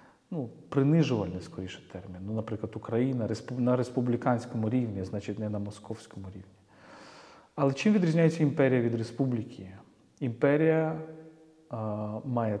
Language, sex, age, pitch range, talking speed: Ukrainian, male, 40-59, 105-140 Hz, 110 wpm